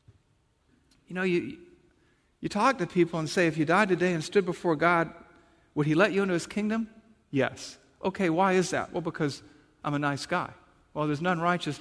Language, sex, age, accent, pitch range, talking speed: English, male, 50-69, American, 145-185 Hz, 200 wpm